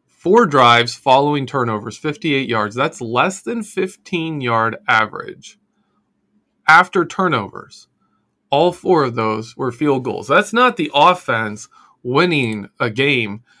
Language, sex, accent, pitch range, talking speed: English, male, American, 120-180 Hz, 120 wpm